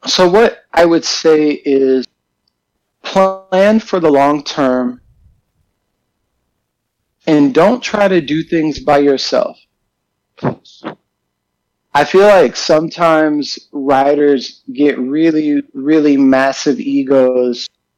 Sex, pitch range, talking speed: male, 130-160 Hz, 95 wpm